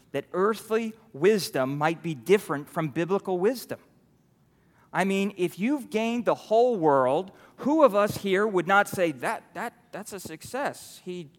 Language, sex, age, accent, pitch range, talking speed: English, male, 40-59, American, 130-175 Hz, 160 wpm